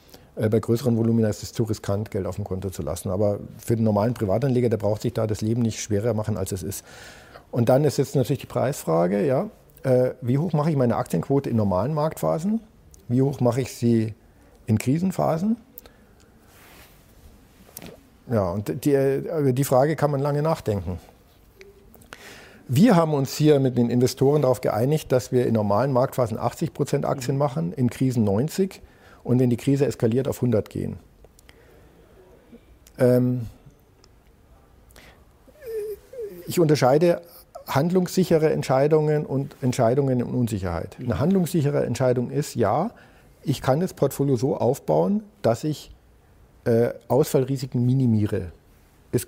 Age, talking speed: 50-69, 145 wpm